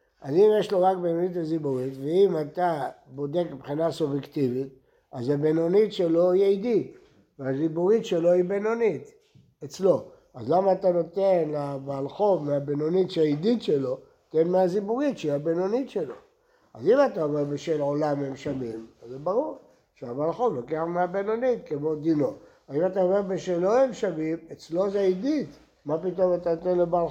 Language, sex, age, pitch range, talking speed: Hebrew, male, 60-79, 150-210 Hz, 145 wpm